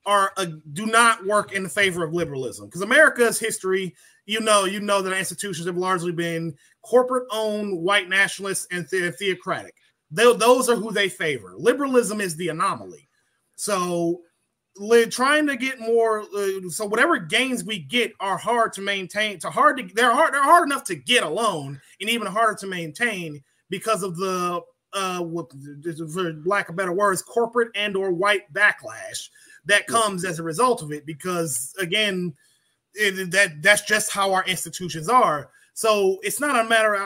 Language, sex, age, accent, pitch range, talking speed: English, male, 20-39, American, 180-225 Hz, 165 wpm